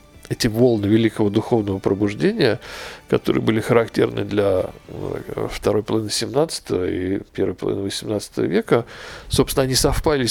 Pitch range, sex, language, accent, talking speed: 105-145 Hz, male, Russian, native, 115 wpm